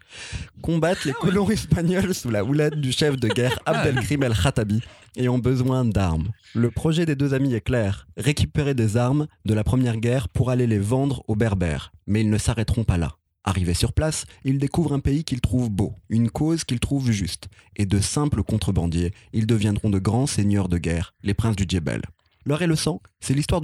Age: 30-49